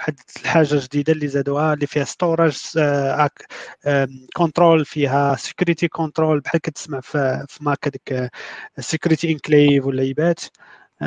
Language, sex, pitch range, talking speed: Arabic, male, 135-160 Hz, 130 wpm